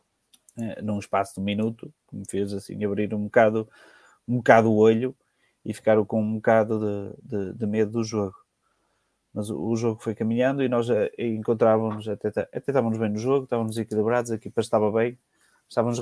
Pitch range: 105-115 Hz